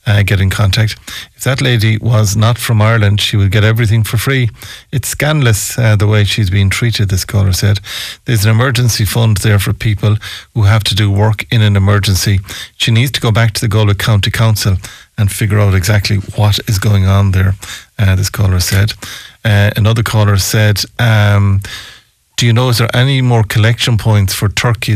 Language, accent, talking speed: English, Irish, 195 wpm